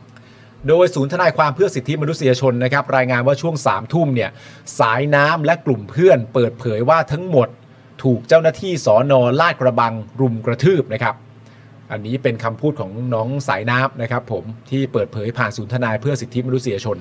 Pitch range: 125-140 Hz